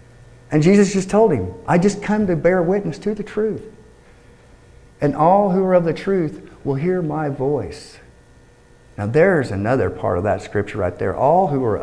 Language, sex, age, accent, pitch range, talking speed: English, male, 50-69, American, 115-150 Hz, 190 wpm